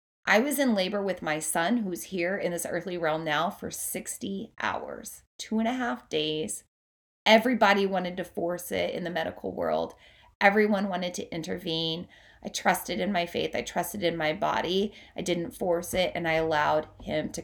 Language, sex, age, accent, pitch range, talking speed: English, female, 20-39, American, 150-200 Hz, 185 wpm